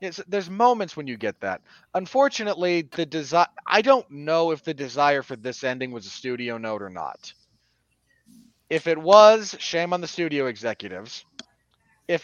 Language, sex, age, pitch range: English, male, 30-49, 120-170 Hz